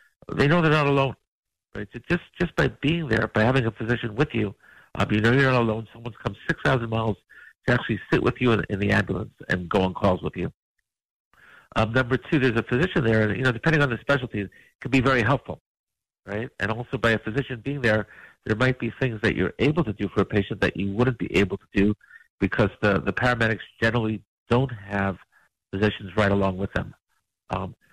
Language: English